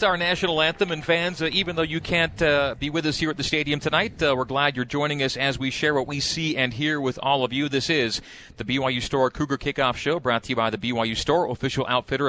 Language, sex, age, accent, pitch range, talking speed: English, male, 40-59, American, 125-150 Hz, 265 wpm